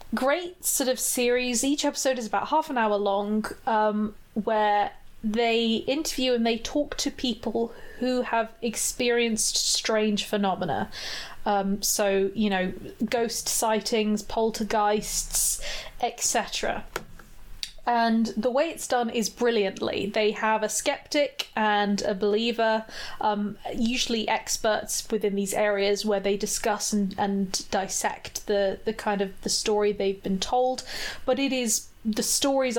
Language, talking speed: English, 135 wpm